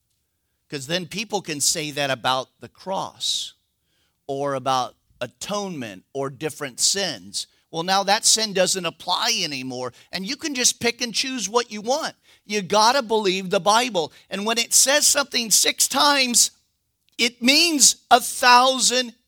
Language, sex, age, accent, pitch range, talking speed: English, male, 50-69, American, 150-240 Hz, 155 wpm